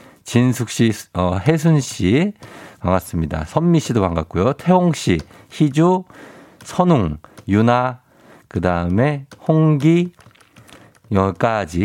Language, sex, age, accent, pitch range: Korean, male, 50-69, native, 100-150 Hz